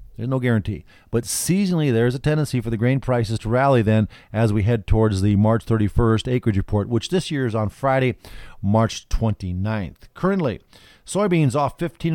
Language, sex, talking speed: English, male, 180 wpm